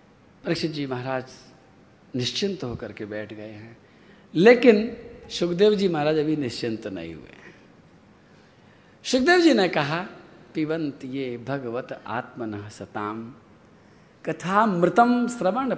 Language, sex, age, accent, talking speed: Hindi, male, 50-69, native, 105 wpm